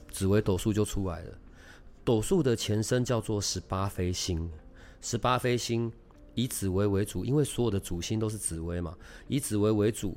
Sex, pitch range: male, 90-120 Hz